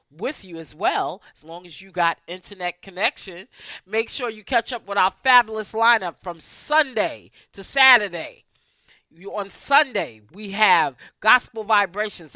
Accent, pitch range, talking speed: American, 165-250 Hz, 150 wpm